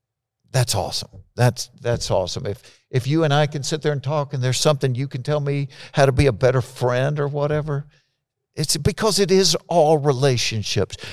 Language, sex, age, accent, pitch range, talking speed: English, male, 60-79, American, 110-140 Hz, 195 wpm